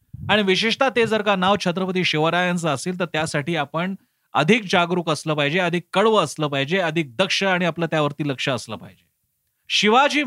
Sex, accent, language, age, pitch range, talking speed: male, native, Marathi, 30-49, 155-200 Hz, 170 wpm